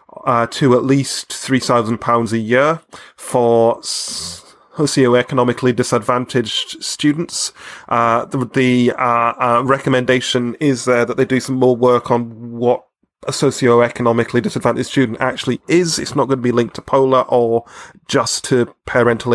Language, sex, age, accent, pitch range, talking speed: English, male, 30-49, British, 120-135 Hz, 140 wpm